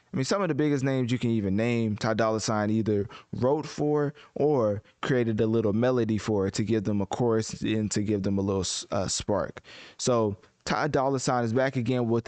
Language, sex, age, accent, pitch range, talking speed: English, male, 20-39, American, 110-135 Hz, 220 wpm